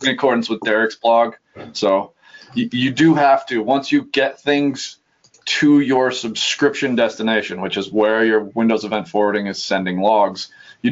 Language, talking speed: English, 165 wpm